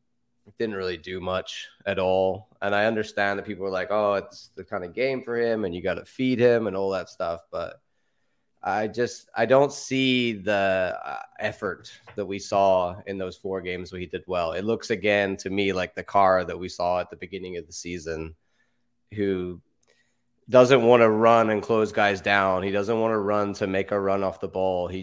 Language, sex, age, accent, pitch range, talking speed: English, male, 20-39, American, 95-120 Hz, 215 wpm